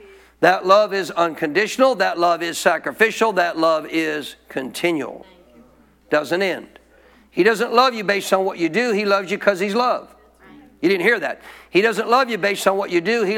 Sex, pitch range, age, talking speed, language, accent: male, 195-250 Hz, 50-69, 195 wpm, English, American